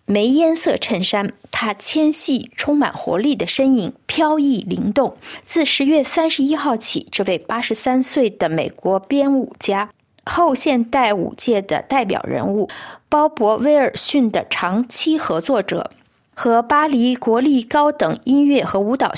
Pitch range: 220-295 Hz